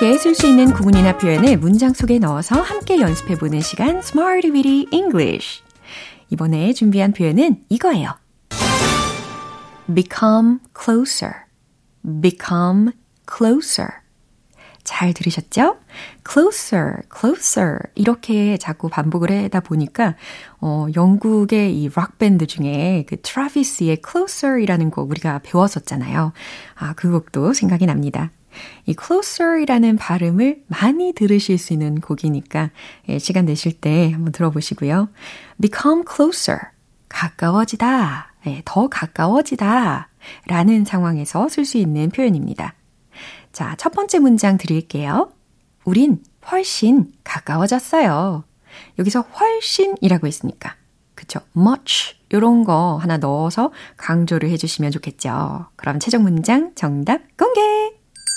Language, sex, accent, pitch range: Korean, female, native, 160-260 Hz